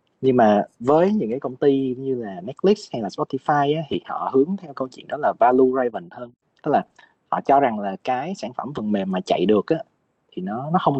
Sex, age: male, 20-39